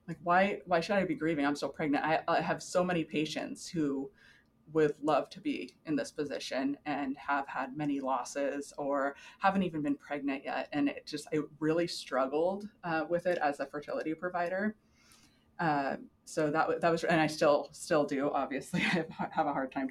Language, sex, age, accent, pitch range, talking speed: English, female, 20-39, American, 140-170 Hz, 195 wpm